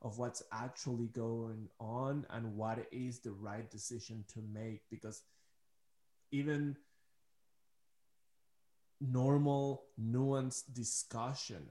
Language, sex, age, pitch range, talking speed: English, male, 20-39, 110-125 Hz, 90 wpm